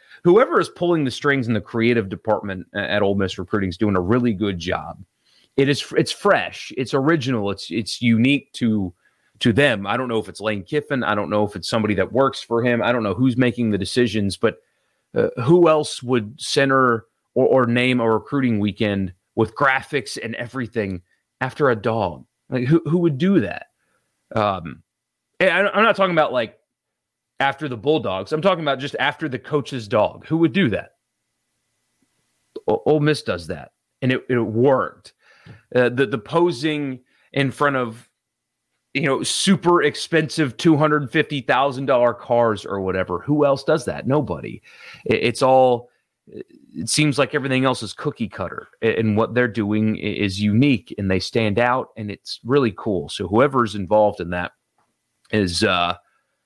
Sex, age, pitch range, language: male, 30-49, 105-140 Hz, English